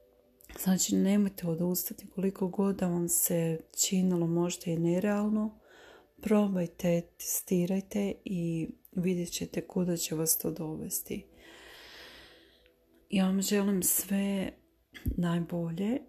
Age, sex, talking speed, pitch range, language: 30-49, female, 95 wpm, 170-195 Hz, Croatian